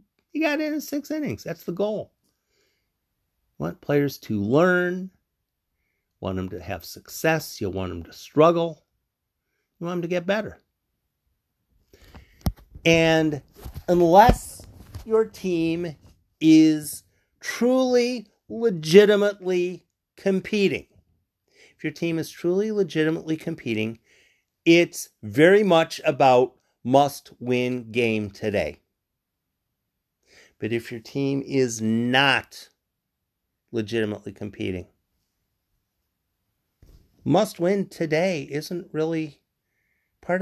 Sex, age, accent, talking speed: male, 50-69, American, 95 wpm